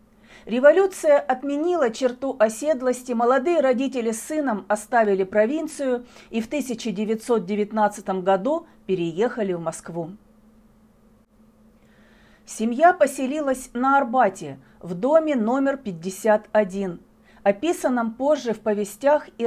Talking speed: 90 wpm